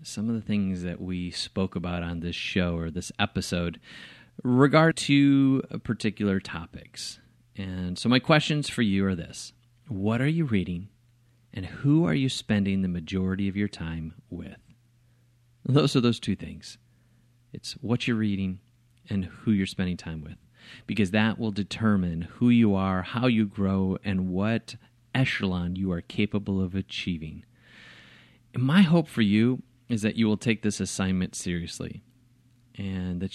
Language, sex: English, male